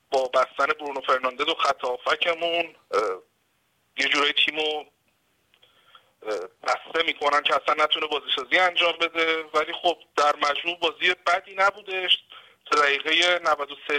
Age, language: 50-69, Persian